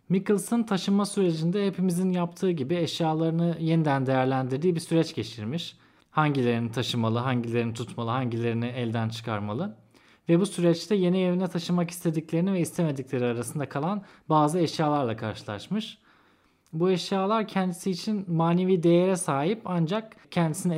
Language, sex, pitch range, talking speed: Turkish, male, 130-175 Hz, 120 wpm